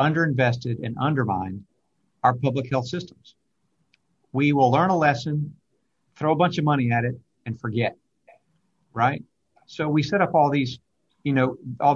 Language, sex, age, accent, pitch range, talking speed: English, male, 50-69, American, 125-150 Hz, 155 wpm